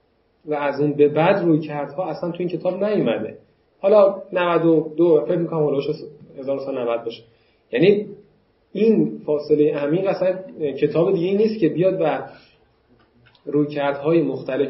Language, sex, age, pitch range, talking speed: Persian, male, 30-49, 135-175 Hz, 120 wpm